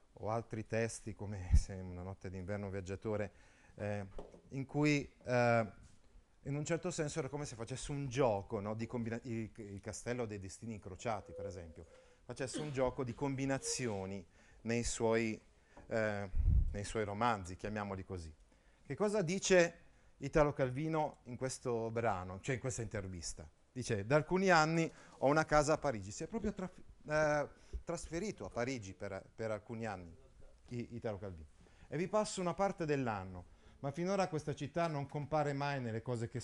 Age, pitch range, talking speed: 30-49, 100-145 Hz, 160 wpm